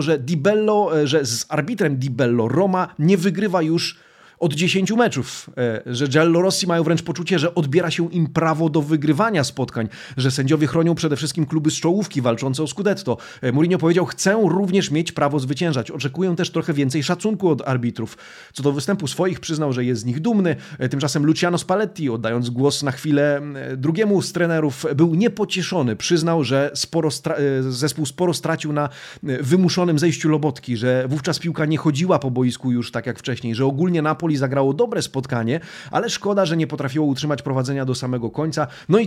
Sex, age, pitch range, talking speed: male, 30-49, 135-175 Hz, 175 wpm